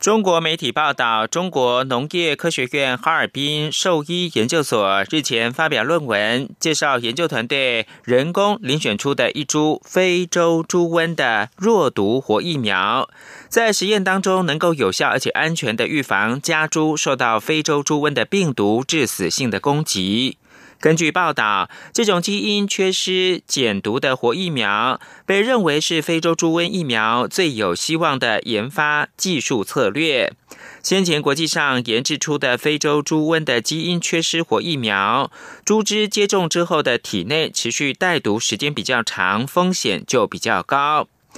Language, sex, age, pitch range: German, male, 30-49, 140-175 Hz